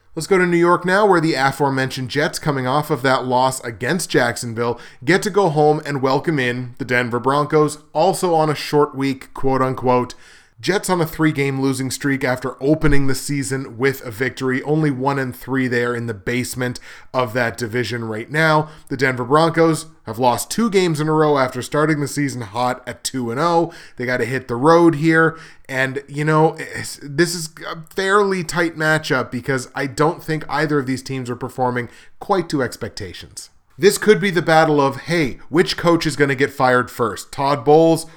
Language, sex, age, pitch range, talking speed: English, male, 20-39, 125-155 Hz, 195 wpm